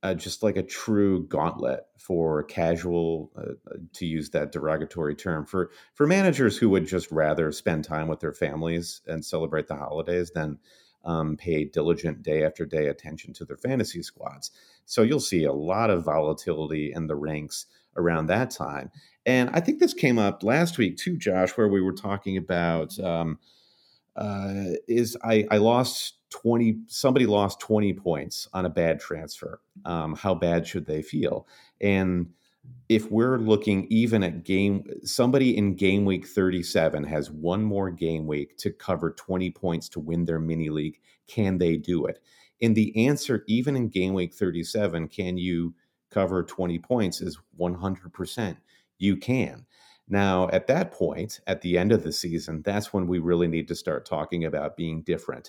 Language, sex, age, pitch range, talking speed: English, male, 40-59, 80-105 Hz, 175 wpm